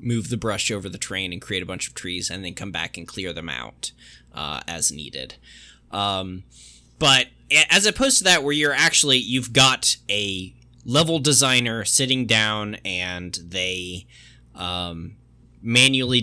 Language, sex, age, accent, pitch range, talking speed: English, male, 20-39, American, 95-125 Hz, 160 wpm